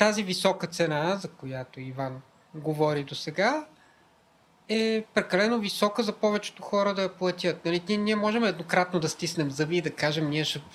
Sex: male